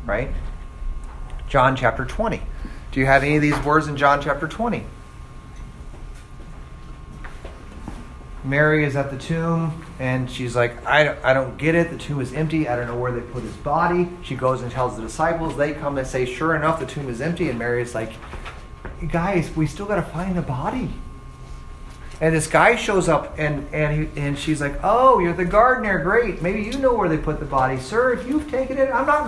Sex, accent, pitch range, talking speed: male, American, 120-200 Hz, 205 wpm